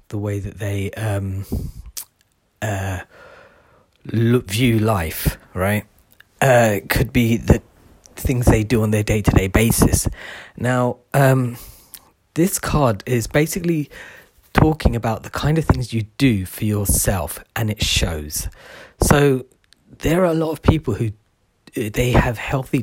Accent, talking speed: British, 135 wpm